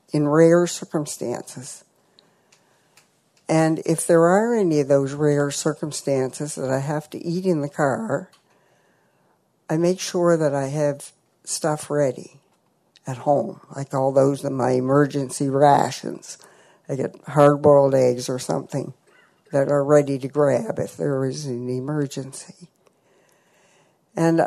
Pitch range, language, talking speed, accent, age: 145-185 Hz, English, 130 wpm, American, 60-79